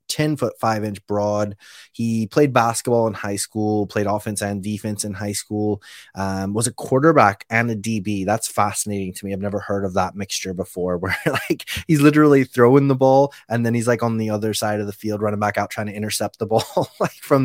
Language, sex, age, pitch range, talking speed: English, male, 20-39, 100-120 Hz, 220 wpm